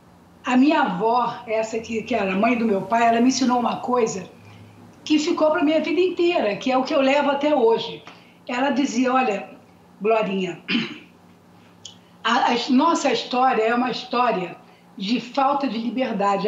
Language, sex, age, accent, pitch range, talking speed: Portuguese, female, 60-79, Brazilian, 225-285 Hz, 170 wpm